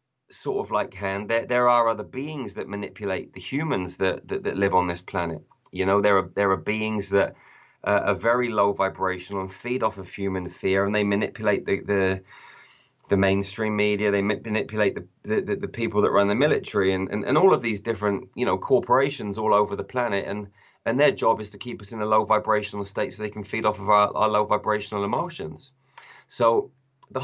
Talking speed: 210 wpm